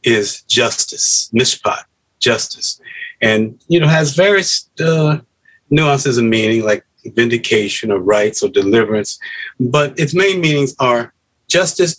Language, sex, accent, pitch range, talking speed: English, male, American, 115-160 Hz, 125 wpm